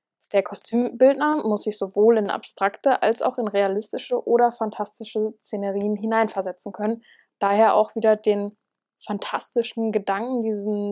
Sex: female